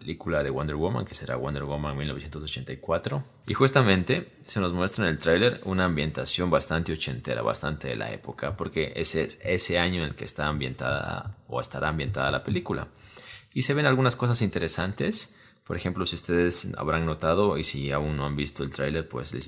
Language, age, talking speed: Spanish, 20-39, 190 wpm